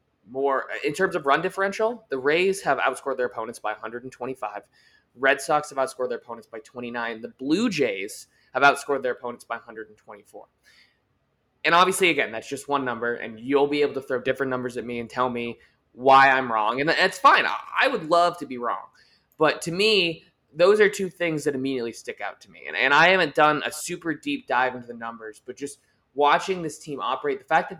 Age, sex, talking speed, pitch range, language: 20-39, male, 210 wpm, 125-155 Hz, English